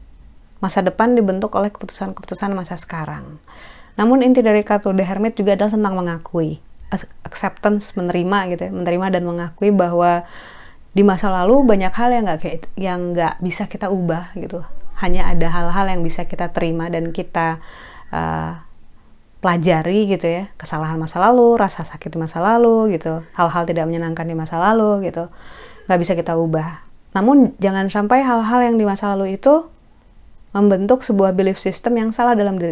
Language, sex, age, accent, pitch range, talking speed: Indonesian, female, 20-39, native, 170-215 Hz, 160 wpm